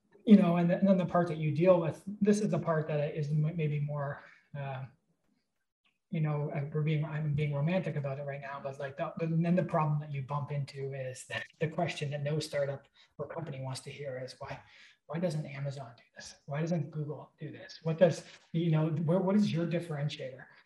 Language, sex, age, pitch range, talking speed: English, male, 20-39, 145-175 Hz, 210 wpm